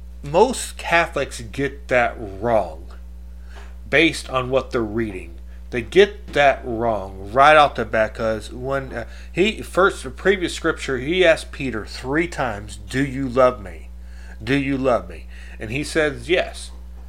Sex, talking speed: male, 150 wpm